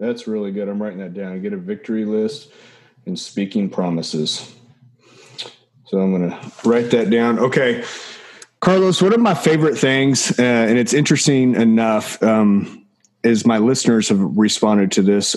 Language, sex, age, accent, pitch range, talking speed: English, male, 30-49, American, 105-130 Hz, 160 wpm